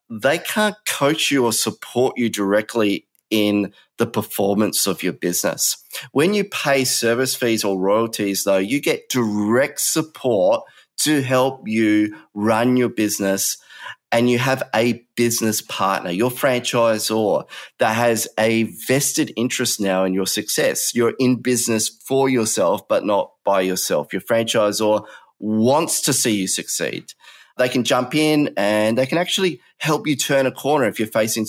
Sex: male